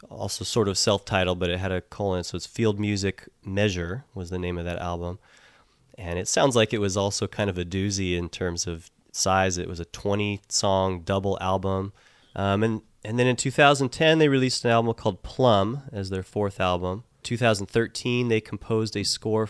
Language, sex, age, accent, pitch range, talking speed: English, male, 30-49, American, 95-115 Hz, 190 wpm